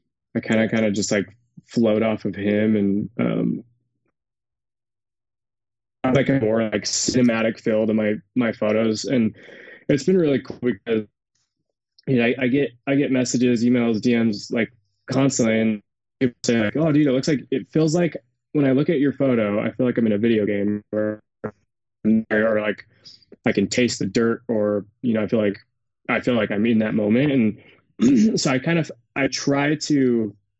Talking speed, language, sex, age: 190 wpm, English, male, 20-39